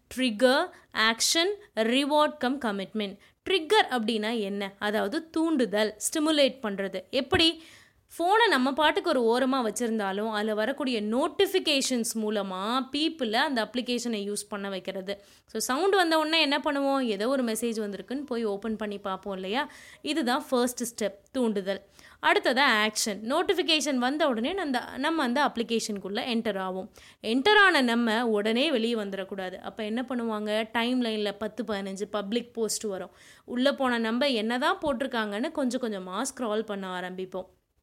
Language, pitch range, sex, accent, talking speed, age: Tamil, 215-280 Hz, female, native, 130 wpm, 20-39